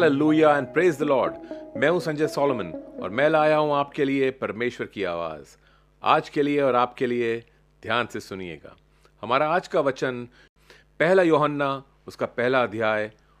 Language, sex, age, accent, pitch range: Hindi, male, 40-59, native, 120-160 Hz